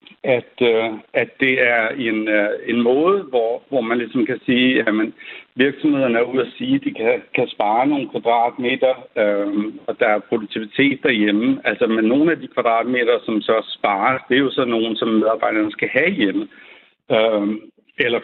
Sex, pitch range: male, 110-165 Hz